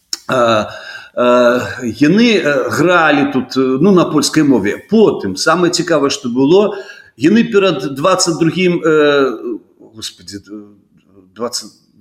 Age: 40-59